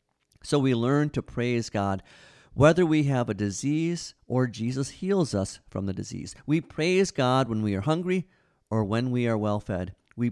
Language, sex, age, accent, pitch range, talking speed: English, male, 50-69, American, 100-130 Hz, 185 wpm